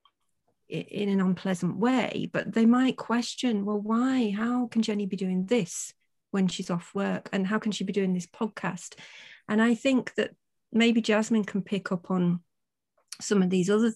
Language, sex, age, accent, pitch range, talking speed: English, female, 40-59, British, 185-215 Hz, 180 wpm